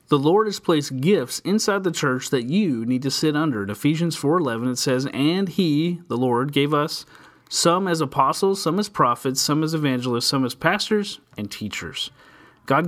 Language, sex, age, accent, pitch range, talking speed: English, male, 30-49, American, 130-180 Hz, 190 wpm